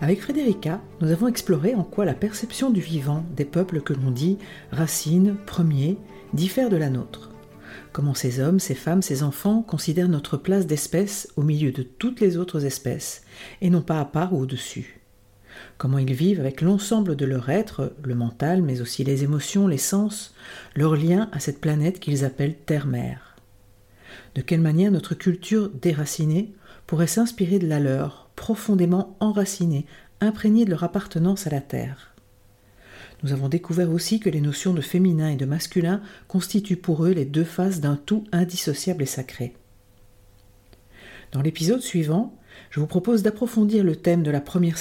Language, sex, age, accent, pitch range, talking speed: French, female, 50-69, French, 140-185 Hz, 170 wpm